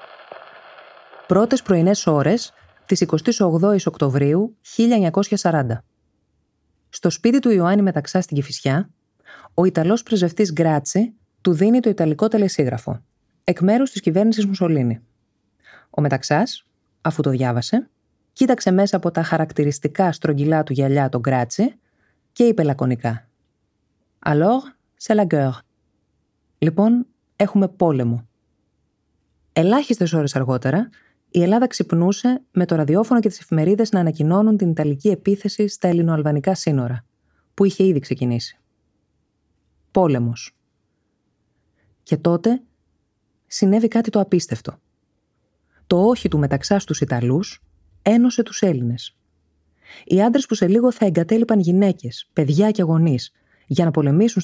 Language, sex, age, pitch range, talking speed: Greek, female, 20-39, 135-210 Hz, 120 wpm